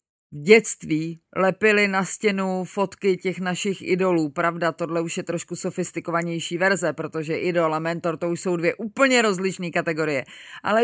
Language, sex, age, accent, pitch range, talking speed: Czech, female, 30-49, native, 175-230 Hz, 155 wpm